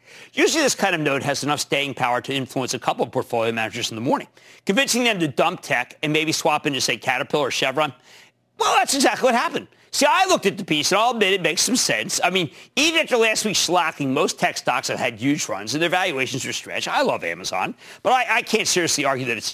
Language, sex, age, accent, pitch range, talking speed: English, male, 50-69, American, 140-225 Hz, 245 wpm